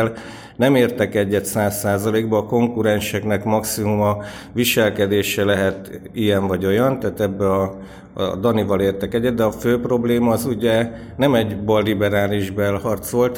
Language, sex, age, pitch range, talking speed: Hungarian, male, 50-69, 100-115 Hz, 135 wpm